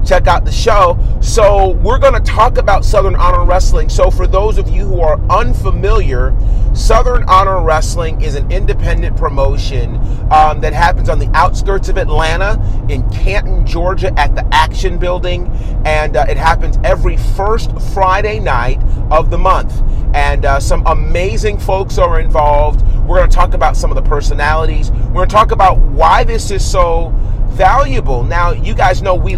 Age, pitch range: 30-49, 105-120 Hz